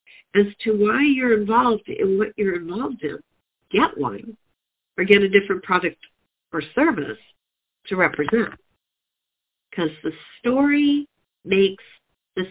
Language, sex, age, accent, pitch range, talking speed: English, female, 50-69, American, 195-240 Hz, 125 wpm